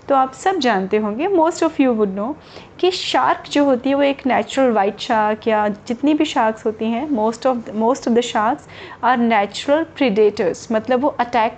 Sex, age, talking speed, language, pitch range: female, 30-49, 195 wpm, Hindi, 220-275 Hz